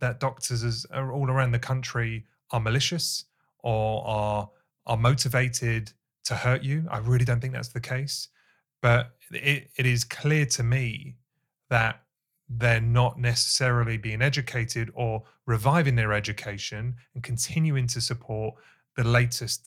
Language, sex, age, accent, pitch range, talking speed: English, male, 30-49, British, 115-135 Hz, 135 wpm